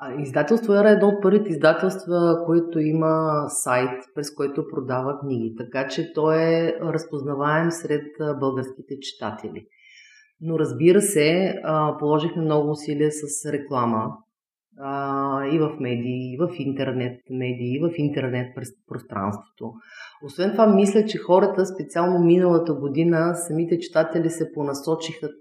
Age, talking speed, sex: 30-49, 125 wpm, female